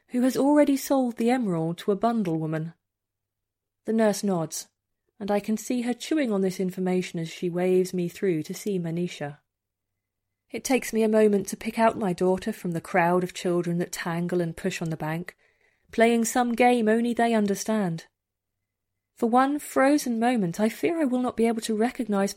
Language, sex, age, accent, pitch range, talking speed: English, female, 30-49, British, 160-220 Hz, 190 wpm